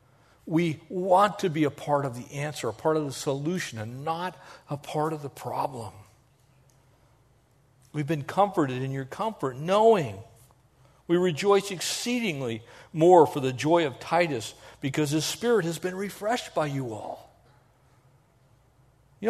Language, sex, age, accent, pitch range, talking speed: English, male, 50-69, American, 125-155 Hz, 145 wpm